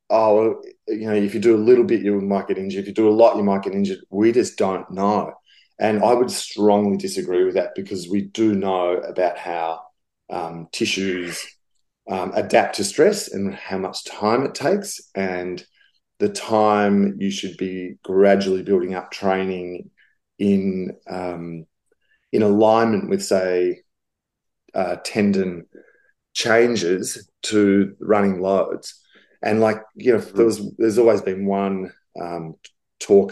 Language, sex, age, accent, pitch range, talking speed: English, male, 30-49, Australian, 95-115 Hz, 150 wpm